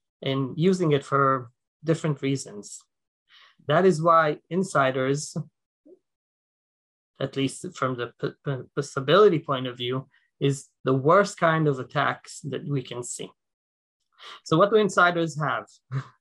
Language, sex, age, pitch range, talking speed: English, male, 30-49, 130-175 Hz, 120 wpm